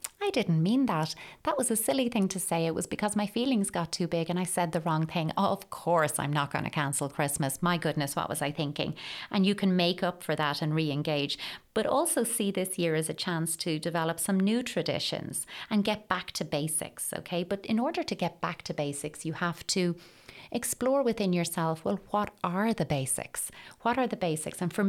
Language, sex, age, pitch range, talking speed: English, female, 30-49, 155-190 Hz, 220 wpm